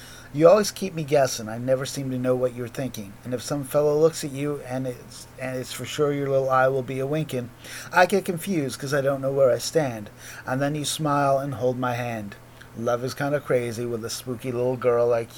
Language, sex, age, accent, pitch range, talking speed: English, male, 30-49, American, 120-145 Hz, 240 wpm